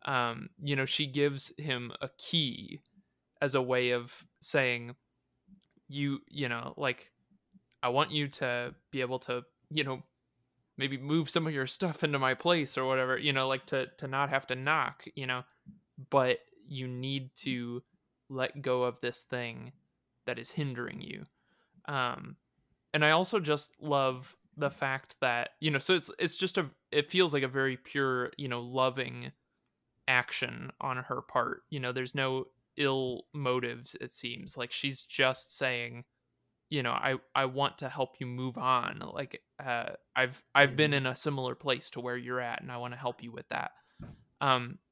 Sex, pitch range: male, 125-145 Hz